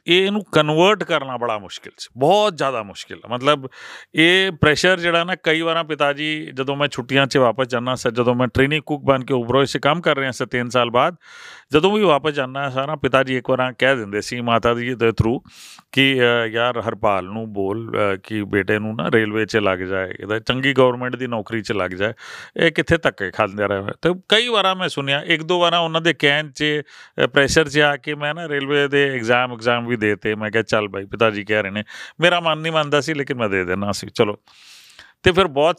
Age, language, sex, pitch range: 40-59, Punjabi, male, 115-155 Hz